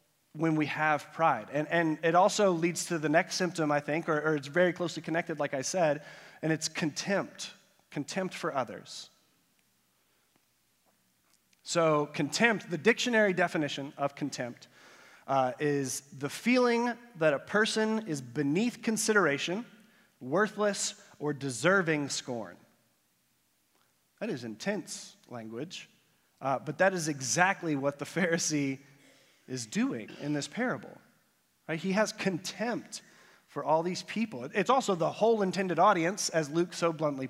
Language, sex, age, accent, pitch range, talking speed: English, male, 30-49, American, 135-190 Hz, 140 wpm